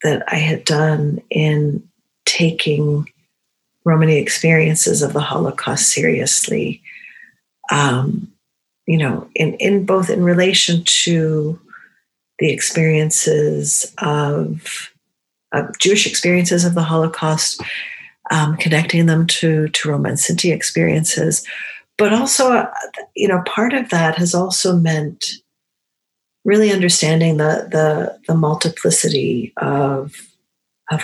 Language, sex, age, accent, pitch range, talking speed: English, female, 50-69, American, 155-180 Hz, 110 wpm